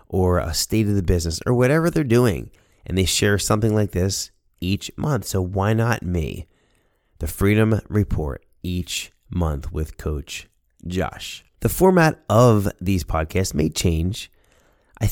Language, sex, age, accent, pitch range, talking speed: English, male, 30-49, American, 90-115 Hz, 150 wpm